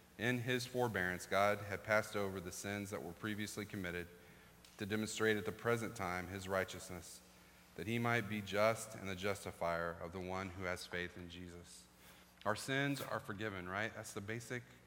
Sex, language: male, English